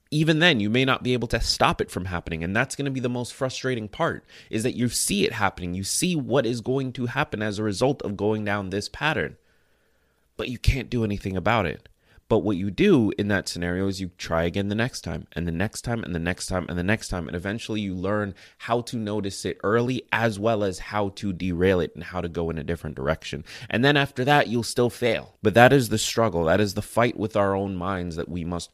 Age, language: 30-49, English